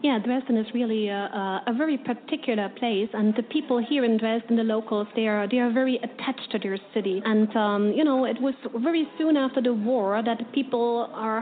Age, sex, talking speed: 30-49, female, 215 wpm